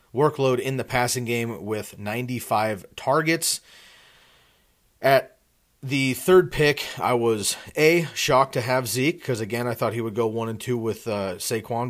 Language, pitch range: English, 110-130 Hz